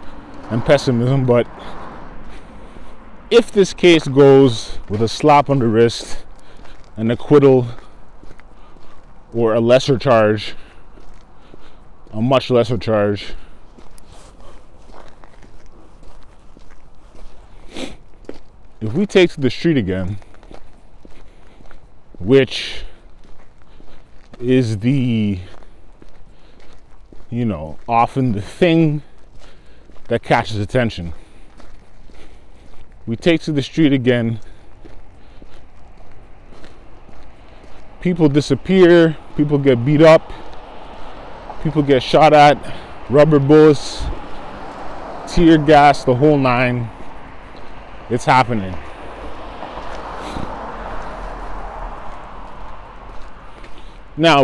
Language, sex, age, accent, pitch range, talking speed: English, male, 20-39, American, 110-145 Hz, 75 wpm